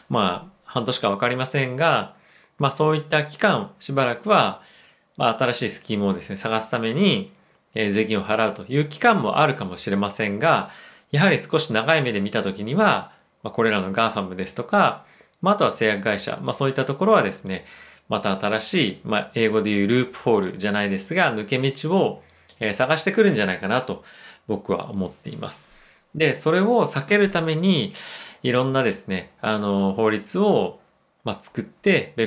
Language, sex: Japanese, male